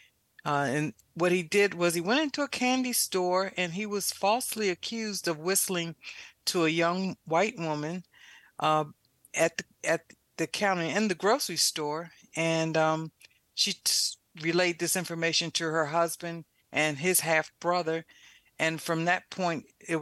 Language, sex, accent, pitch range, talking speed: English, female, American, 150-180 Hz, 155 wpm